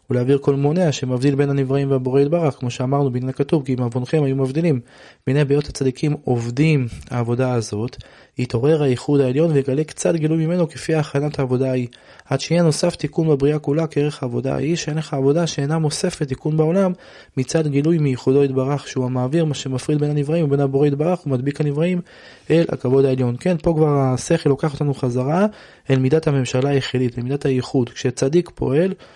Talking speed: 140 wpm